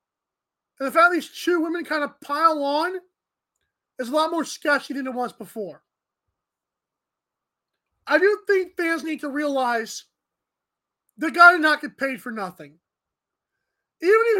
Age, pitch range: 20-39, 275-345 Hz